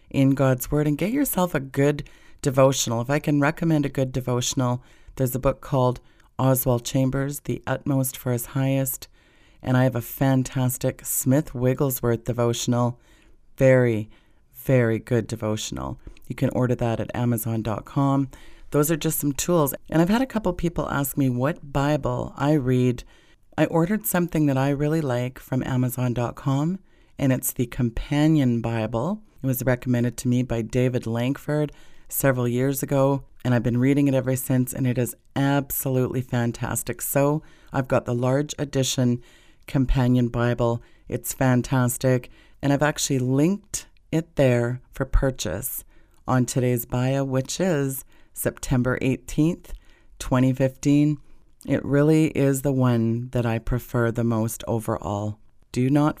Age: 40-59